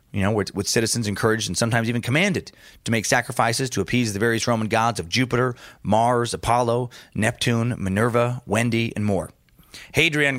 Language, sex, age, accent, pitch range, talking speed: English, male, 30-49, American, 100-130 Hz, 170 wpm